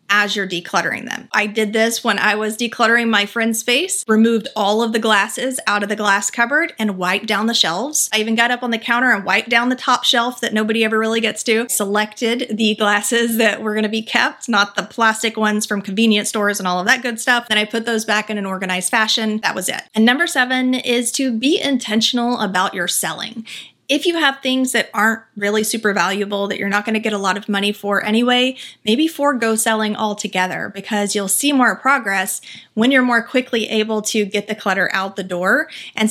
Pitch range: 205-240 Hz